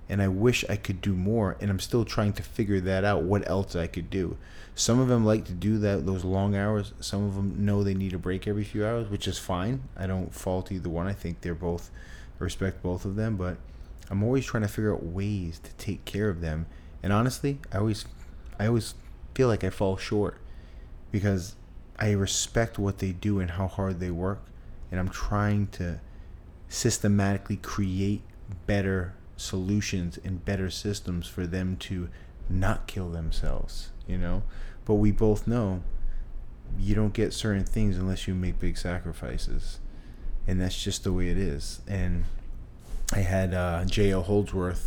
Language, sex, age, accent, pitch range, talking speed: English, male, 20-39, American, 85-105 Hz, 185 wpm